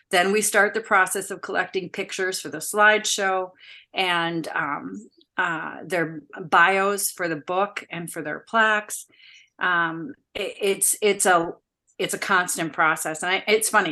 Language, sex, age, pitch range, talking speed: English, female, 40-59, 165-200 Hz, 155 wpm